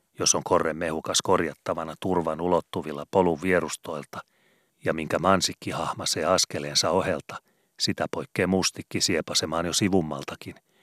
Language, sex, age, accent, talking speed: Finnish, male, 40-59, native, 115 wpm